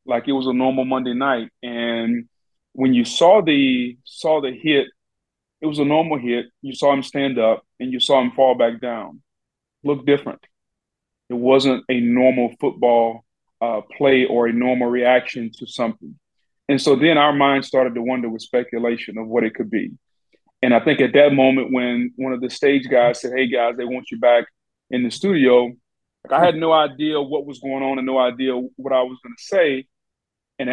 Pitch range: 125-145 Hz